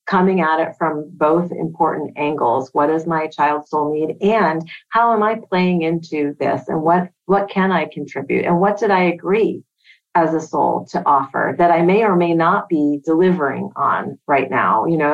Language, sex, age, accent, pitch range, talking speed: English, female, 40-59, American, 150-180 Hz, 195 wpm